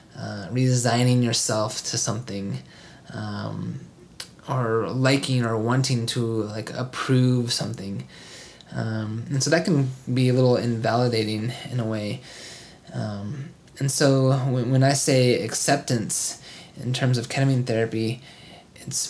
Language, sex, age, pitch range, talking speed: English, male, 20-39, 115-130 Hz, 125 wpm